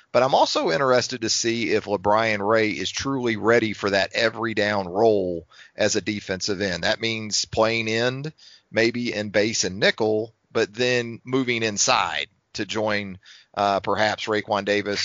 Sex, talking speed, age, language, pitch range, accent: male, 160 wpm, 40-59, English, 95-115 Hz, American